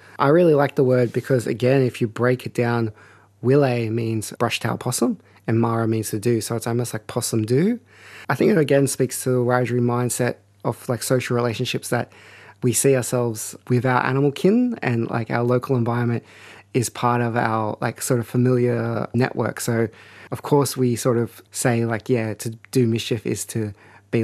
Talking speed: 190 wpm